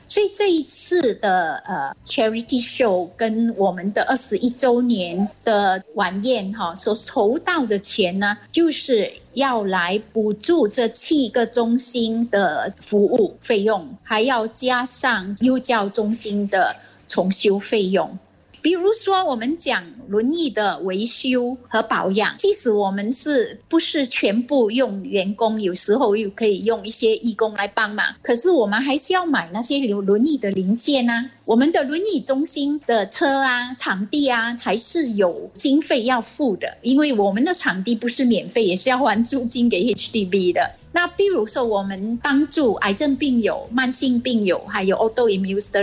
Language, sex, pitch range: Chinese, female, 205-275 Hz